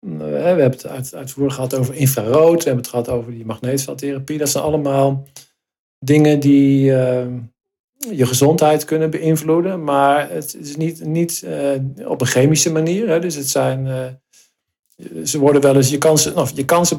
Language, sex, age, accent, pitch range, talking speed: Dutch, male, 50-69, Dutch, 125-155 Hz, 140 wpm